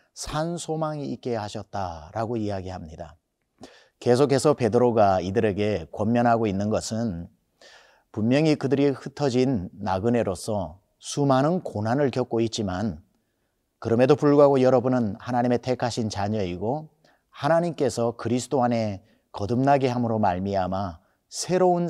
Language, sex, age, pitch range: Korean, male, 40-59, 105-130 Hz